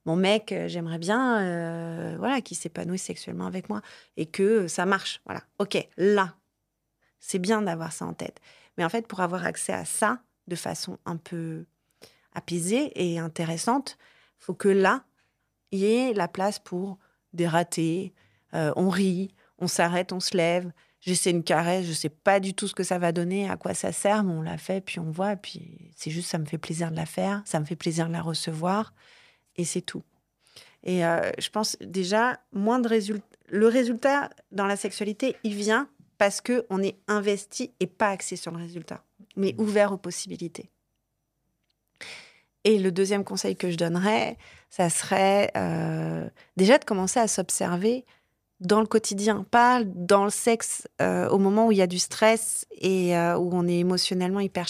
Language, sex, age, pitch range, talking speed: French, female, 30-49, 175-215 Hz, 190 wpm